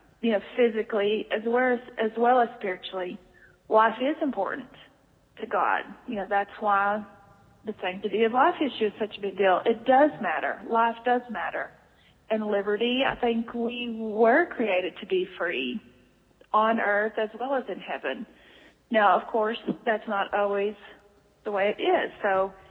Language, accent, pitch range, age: English, American, 200-230 Hz, 40-59